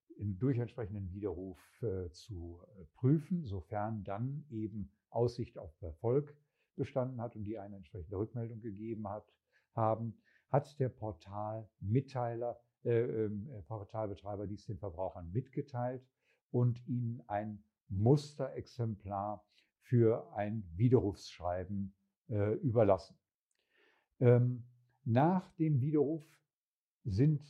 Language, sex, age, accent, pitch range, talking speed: German, male, 50-69, German, 100-125 Hz, 100 wpm